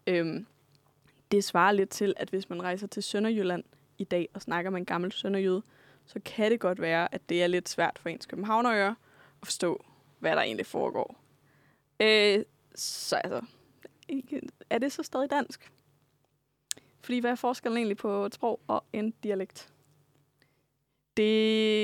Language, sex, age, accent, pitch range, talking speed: Danish, female, 20-39, native, 155-210 Hz, 160 wpm